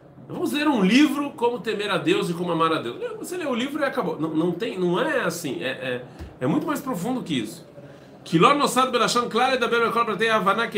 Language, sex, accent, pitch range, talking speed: Portuguese, male, Brazilian, 135-190 Hz, 185 wpm